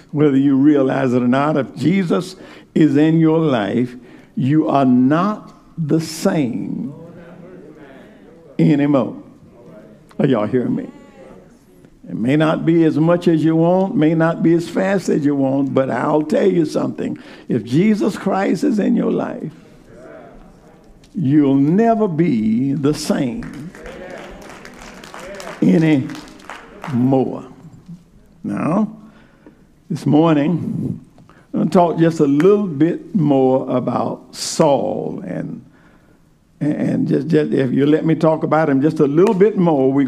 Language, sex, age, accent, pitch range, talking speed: English, male, 60-79, American, 140-175 Hz, 130 wpm